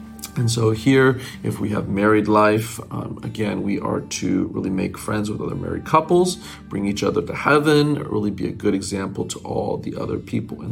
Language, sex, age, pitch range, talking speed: English, male, 40-59, 105-135 Hz, 200 wpm